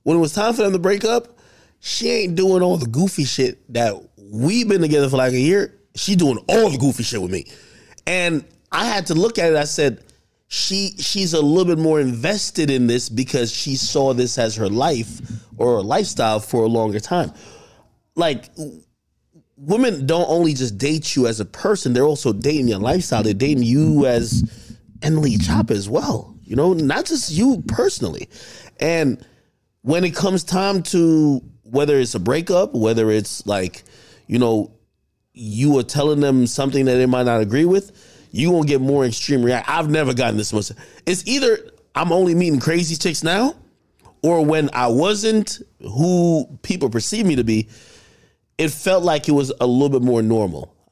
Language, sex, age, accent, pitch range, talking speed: English, male, 20-39, American, 120-175 Hz, 190 wpm